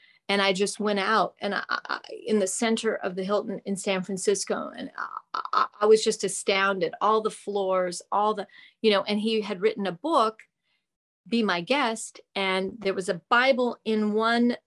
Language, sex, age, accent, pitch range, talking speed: English, female, 40-59, American, 195-225 Hz, 190 wpm